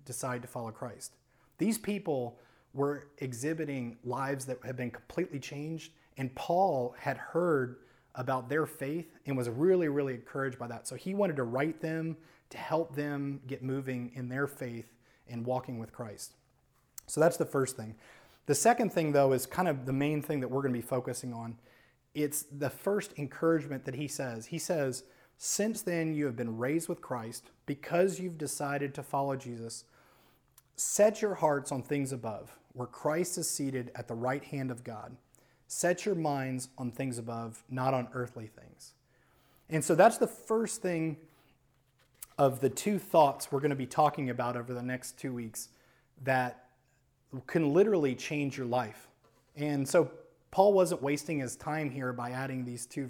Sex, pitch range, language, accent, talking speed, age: male, 125-155 Hz, English, American, 175 wpm, 30-49